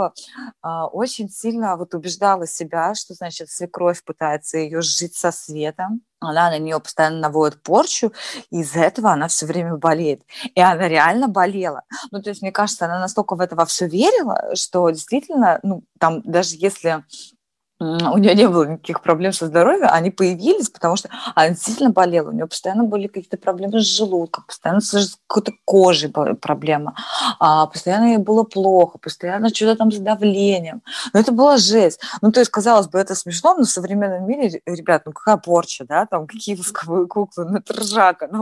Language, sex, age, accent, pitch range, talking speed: Russian, female, 20-39, native, 170-220 Hz, 175 wpm